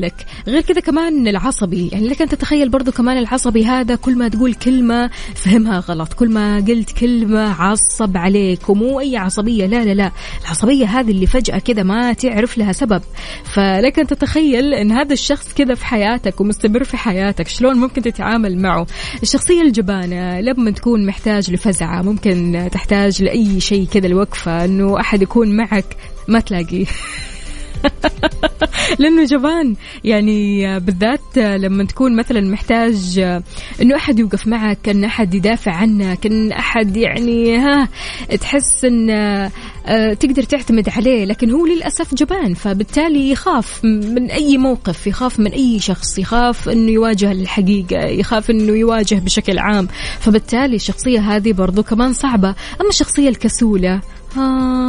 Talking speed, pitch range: 140 wpm, 200-255 Hz